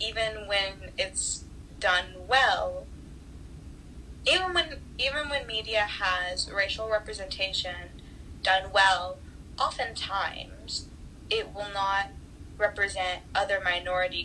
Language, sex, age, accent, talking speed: English, female, 10-29, American, 95 wpm